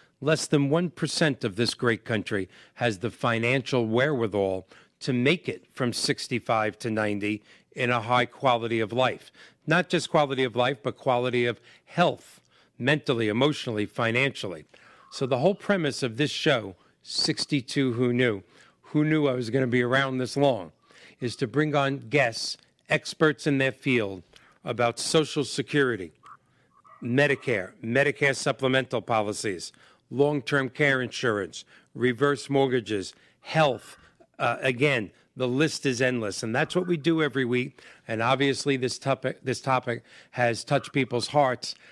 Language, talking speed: English, 145 wpm